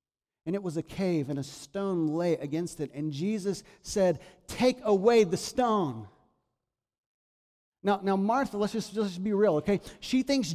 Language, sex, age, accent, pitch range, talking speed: English, male, 40-59, American, 155-215 Hz, 170 wpm